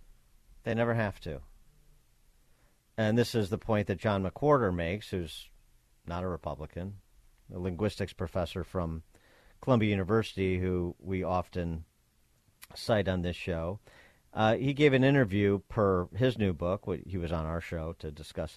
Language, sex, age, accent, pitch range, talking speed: English, male, 50-69, American, 85-105 Hz, 150 wpm